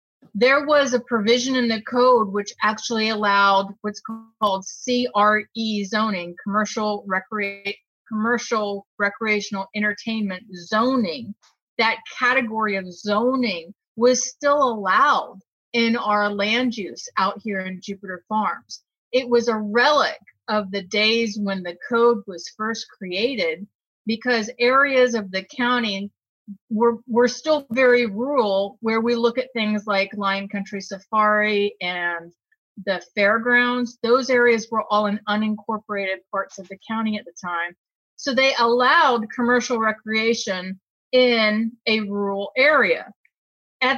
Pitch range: 200-245 Hz